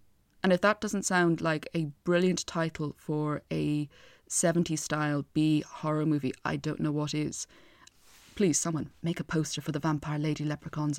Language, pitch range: English, 150-190 Hz